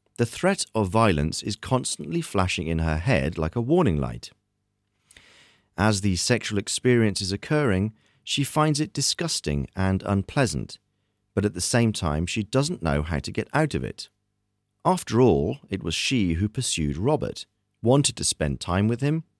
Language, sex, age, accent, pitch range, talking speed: Czech, male, 40-59, British, 95-130 Hz, 165 wpm